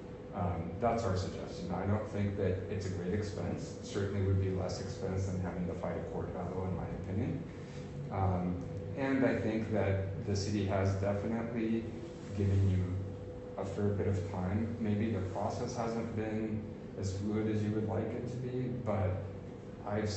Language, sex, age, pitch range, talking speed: English, male, 30-49, 95-105 Hz, 175 wpm